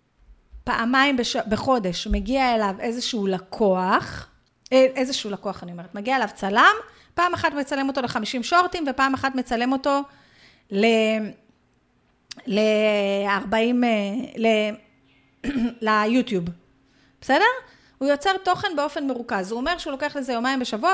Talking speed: 120 wpm